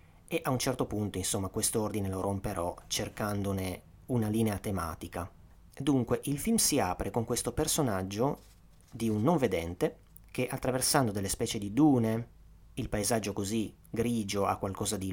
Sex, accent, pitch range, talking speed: male, native, 95-135 Hz, 150 wpm